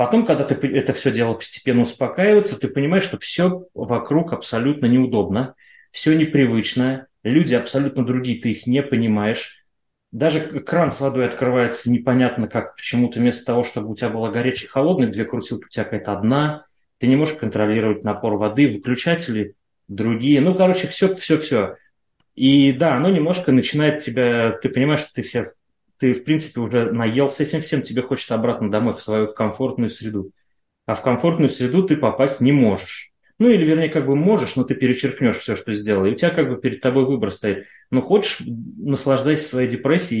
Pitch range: 115-145 Hz